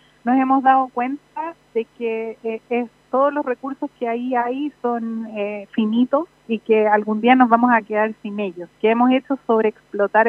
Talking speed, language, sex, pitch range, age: 185 wpm, Spanish, female, 220-260 Hz, 30-49